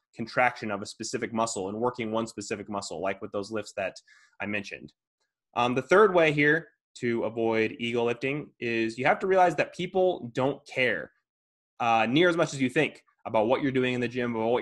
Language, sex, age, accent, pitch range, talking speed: English, male, 20-39, American, 110-140 Hz, 210 wpm